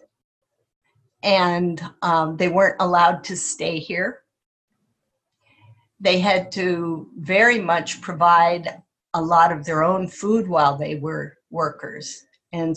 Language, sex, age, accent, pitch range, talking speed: English, female, 50-69, American, 165-205 Hz, 120 wpm